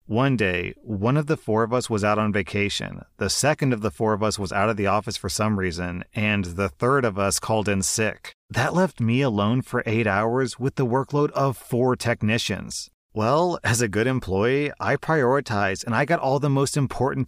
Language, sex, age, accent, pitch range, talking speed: English, male, 30-49, American, 105-140 Hz, 215 wpm